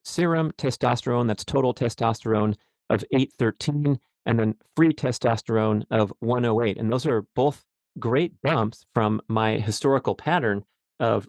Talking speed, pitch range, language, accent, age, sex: 130 wpm, 105-125 Hz, English, American, 40-59, male